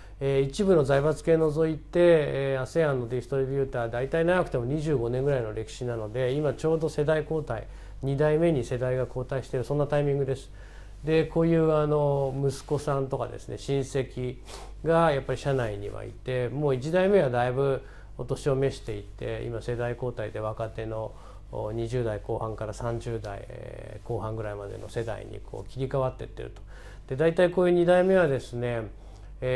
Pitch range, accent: 115-145 Hz, native